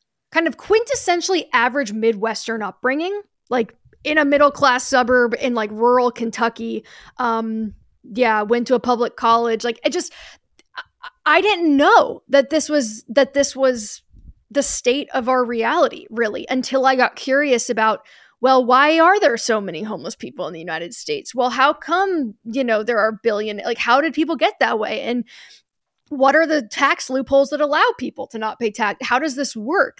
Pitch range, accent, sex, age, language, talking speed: 225-280 Hz, American, female, 10-29, English, 180 wpm